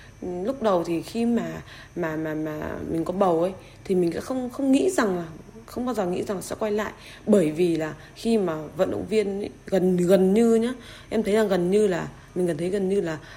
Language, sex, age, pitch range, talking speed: Vietnamese, female, 20-39, 165-215 Hz, 240 wpm